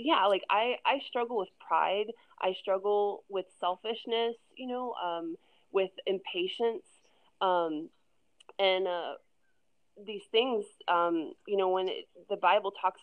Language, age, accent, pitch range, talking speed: English, 20-39, American, 175-225 Hz, 135 wpm